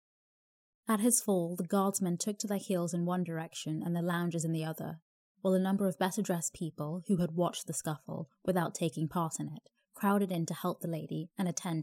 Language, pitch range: English, 170-210 Hz